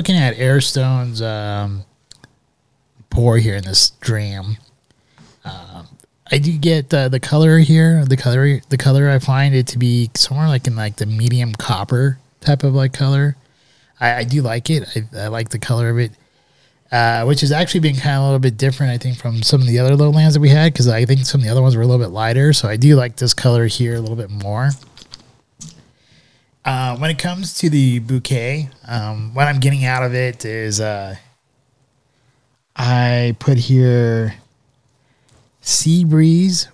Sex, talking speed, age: male, 195 wpm, 20-39